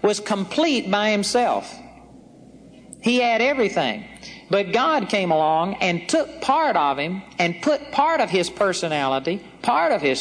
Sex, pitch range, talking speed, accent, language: male, 180-240 Hz, 145 wpm, American, English